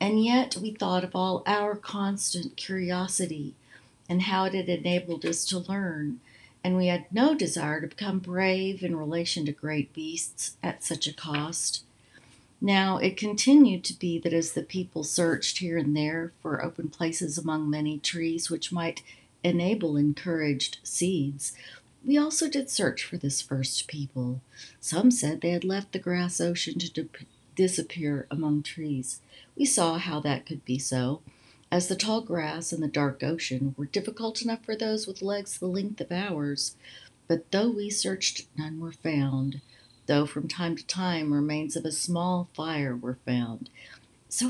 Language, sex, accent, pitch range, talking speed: English, female, American, 145-190 Hz, 170 wpm